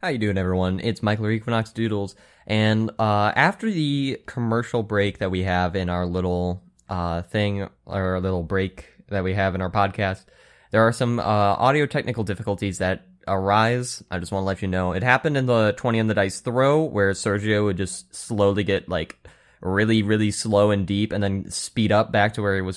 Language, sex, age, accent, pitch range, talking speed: English, male, 10-29, American, 95-120 Hz, 205 wpm